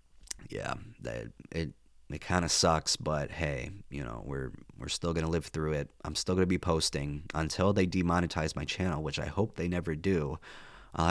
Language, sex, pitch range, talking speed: English, male, 80-95 Hz, 200 wpm